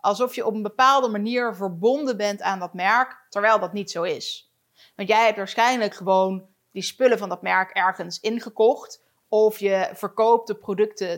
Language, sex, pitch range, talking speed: Dutch, female, 200-235 Hz, 175 wpm